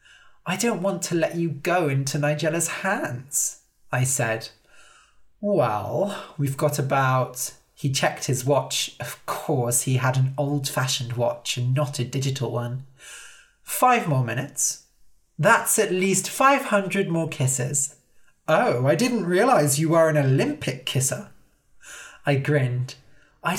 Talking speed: 135 wpm